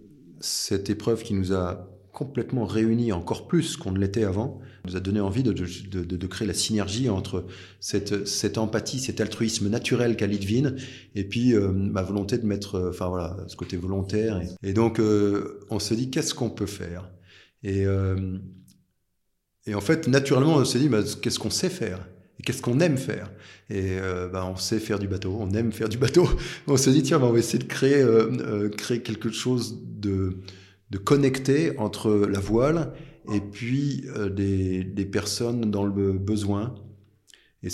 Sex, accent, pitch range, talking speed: male, French, 95-120 Hz, 190 wpm